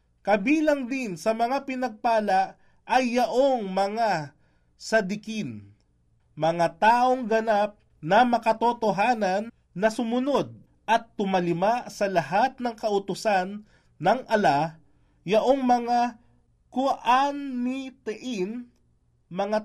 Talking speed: 85 wpm